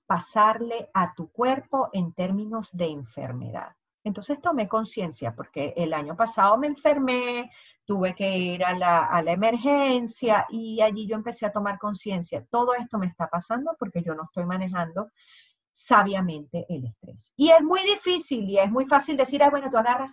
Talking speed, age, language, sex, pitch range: 175 wpm, 40-59, Spanish, female, 180-255 Hz